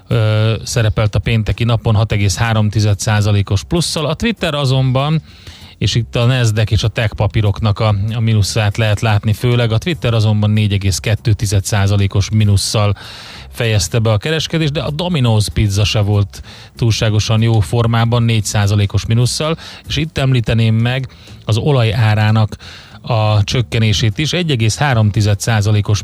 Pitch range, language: 105-120 Hz, Hungarian